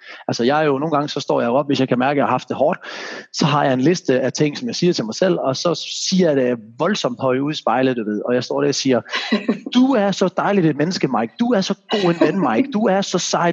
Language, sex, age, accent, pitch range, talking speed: Danish, male, 30-49, native, 135-200 Hz, 300 wpm